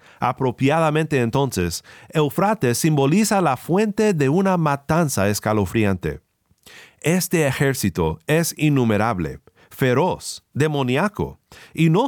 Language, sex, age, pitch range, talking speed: Spanish, male, 40-59, 125-180 Hz, 90 wpm